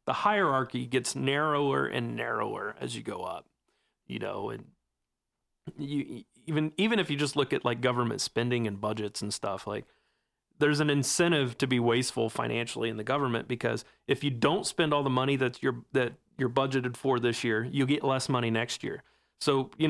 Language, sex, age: English, male, 30-49